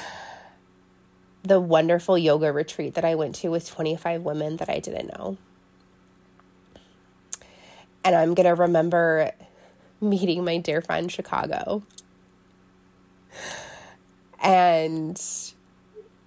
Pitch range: 145-175 Hz